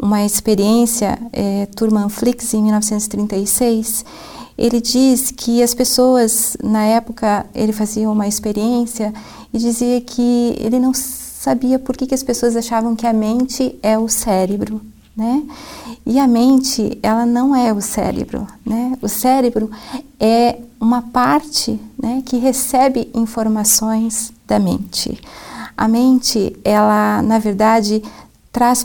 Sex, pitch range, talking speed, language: female, 220-260 Hz, 130 wpm, Portuguese